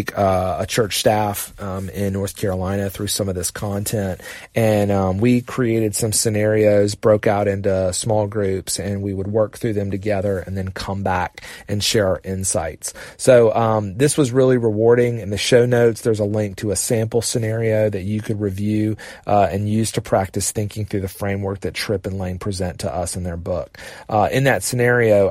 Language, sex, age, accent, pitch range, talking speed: English, male, 30-49, American, 100-115 Hz, 195 wpm